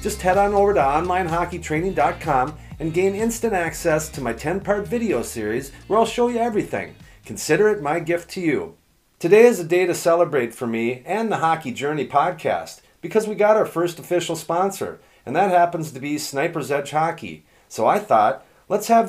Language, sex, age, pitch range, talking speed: English, male, 40-59, 140-185 Hz, 185 wpm